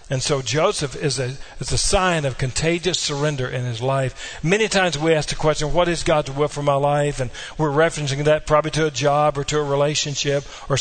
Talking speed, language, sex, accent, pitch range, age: 215 wpm, English, male, American, 140-175 Hz, 50-69